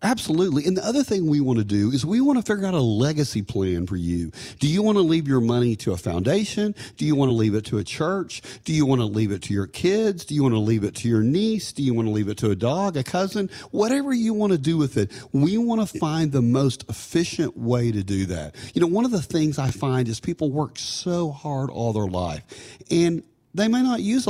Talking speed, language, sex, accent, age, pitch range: 240 wpm, English, male, American, 40-59, 105-165 Hz